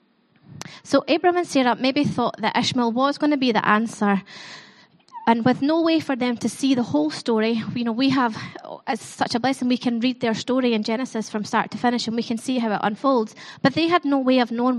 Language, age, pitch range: English, 20-39, 215-260 Hz